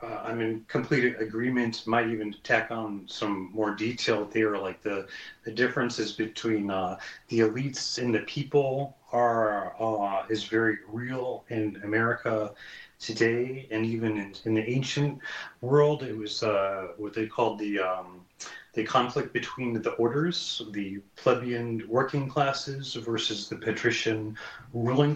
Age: 30-49